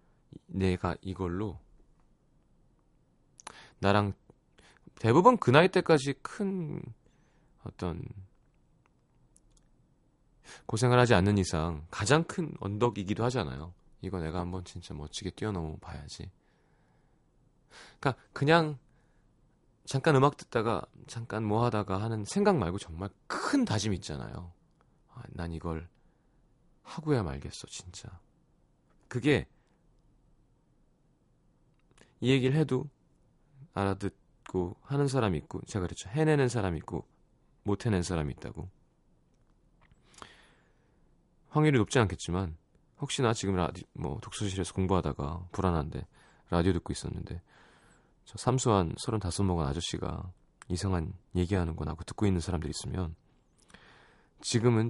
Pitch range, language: 90-125 Hz, Korean